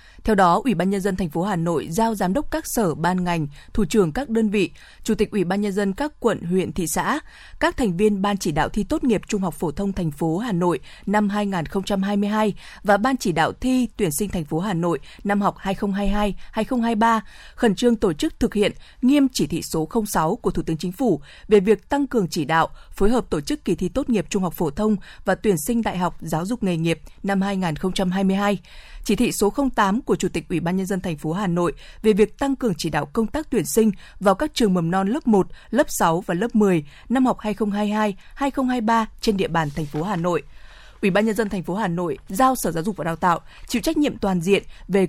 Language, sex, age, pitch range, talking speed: Vietnamese, female, 20-39, 180-230 Hz, 240 wpm